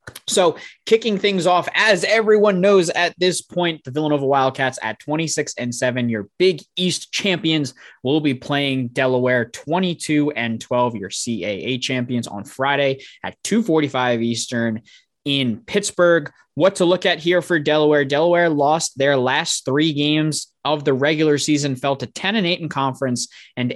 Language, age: English, 20-39